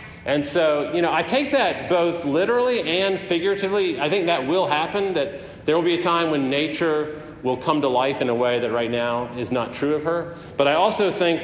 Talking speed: 225 wpm